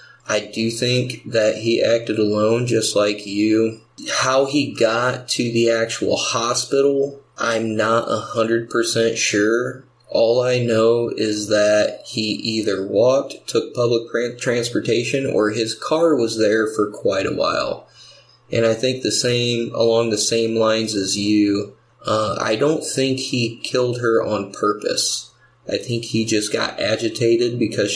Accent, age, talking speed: American, 20-39, 150 wpm